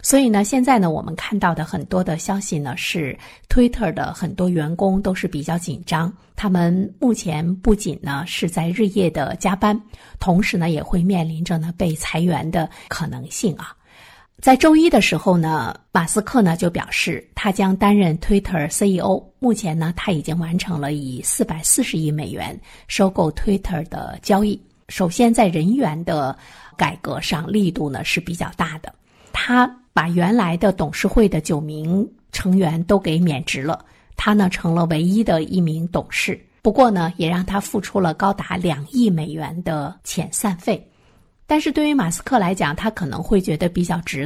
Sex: female